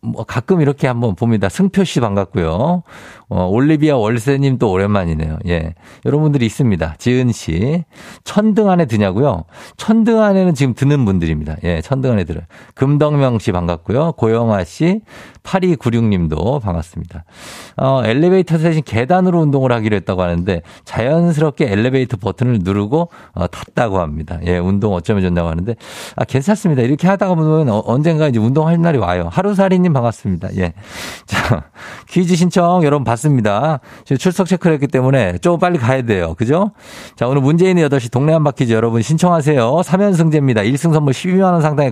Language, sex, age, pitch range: Korean, male, 50-69, 105-165 Hz